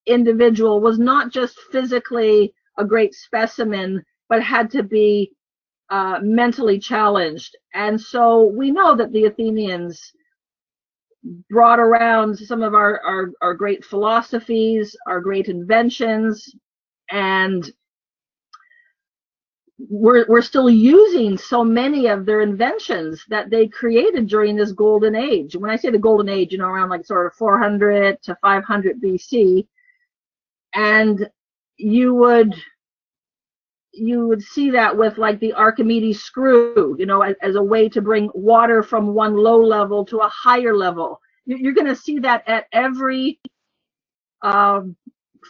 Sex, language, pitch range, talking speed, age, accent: female, English, 205-240 Hz, 135 wpm, 50-69, American